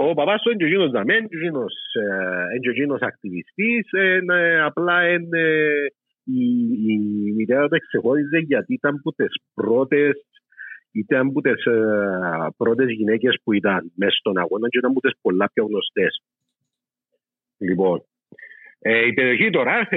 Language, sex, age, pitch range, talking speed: Greek, male, 50-69, 120-185 Hz, 95 wpm